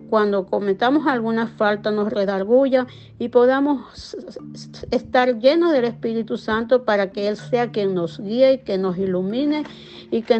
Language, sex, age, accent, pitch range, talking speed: Spanish, female, 40-59, American, 205-245 Hz, 150 wpm